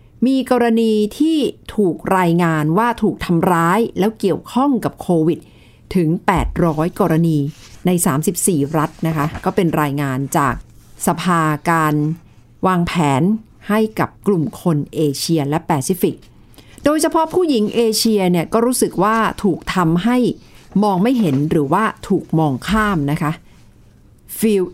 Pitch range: 155-220 Hz